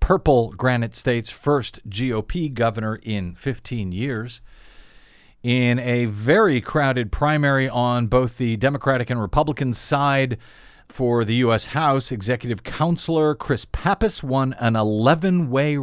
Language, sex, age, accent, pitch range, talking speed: English, male, 40-59, American, 115-145 Hz, 120 wpm